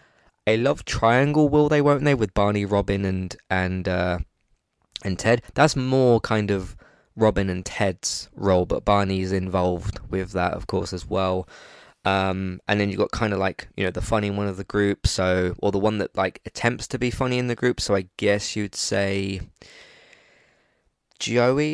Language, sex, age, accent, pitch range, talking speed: English, male, 20-39, British, 95-115 Hz, 180 wpm